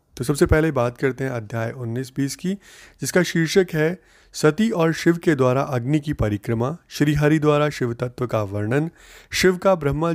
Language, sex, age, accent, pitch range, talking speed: Hindi, male, 30-49, native, 115-155 Hz, 170 wpm